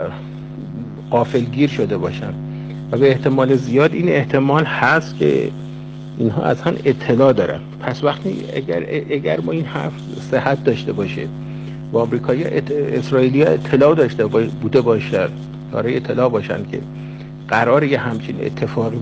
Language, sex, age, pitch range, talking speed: Persian, male, 50-69, 125-145 Hz, 135 wpm